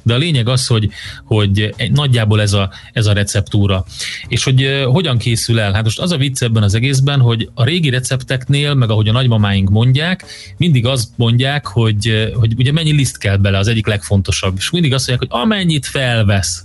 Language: Hungarian